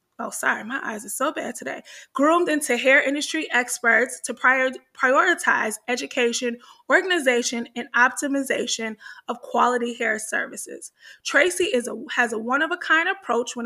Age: 20-39